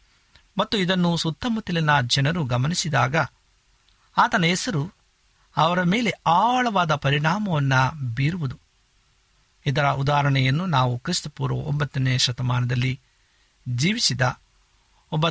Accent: native